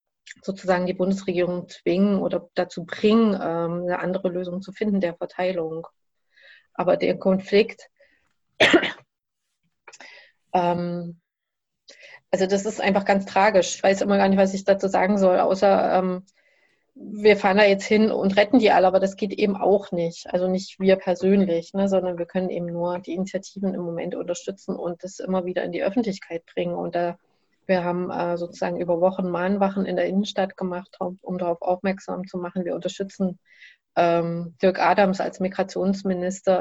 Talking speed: 160 wpm